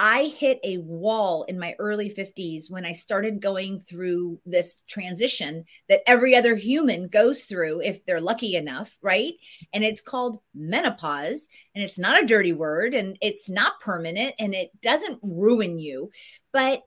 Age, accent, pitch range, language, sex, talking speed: 30-49, American, 190-270 Hz, English, female, 165 wpm